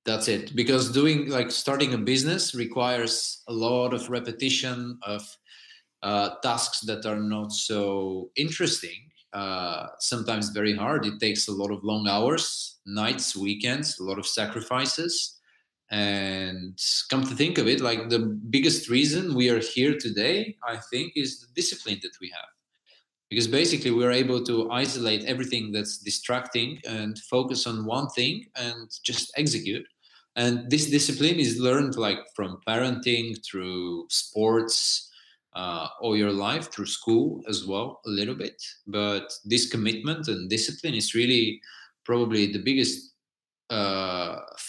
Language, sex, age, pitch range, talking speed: English, male, 20-39, 105-140 Hz, 145 wpm